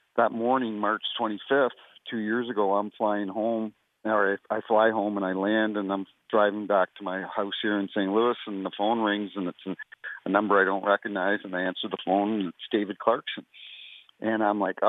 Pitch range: 100-115 Hz